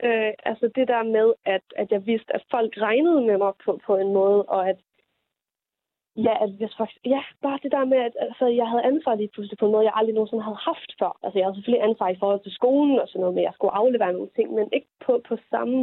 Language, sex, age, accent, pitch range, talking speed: Danish, female, 20-39, native, 210-275 Hz, 260 wpm